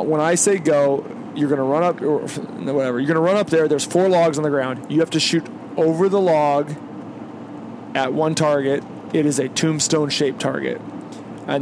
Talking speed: 195 wpm